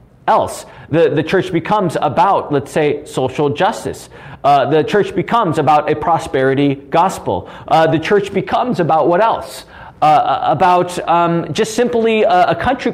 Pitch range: 160-230 Hz